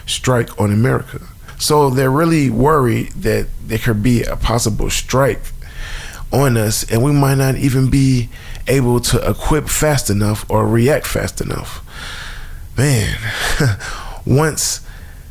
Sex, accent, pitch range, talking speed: male, American, 105-125 Hz, 130 wpm